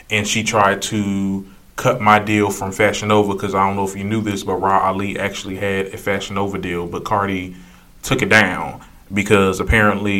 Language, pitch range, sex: English, 100-115 Hz, male